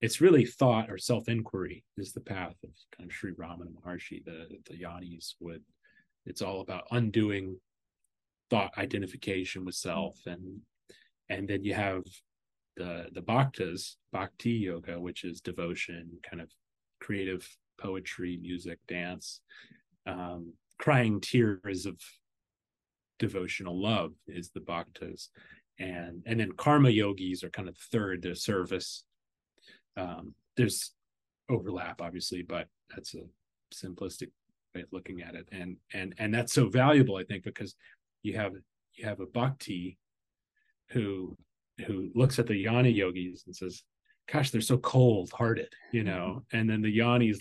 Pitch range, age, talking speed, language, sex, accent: 90-120 Hz, 30-49, 145 wpm, English, male, American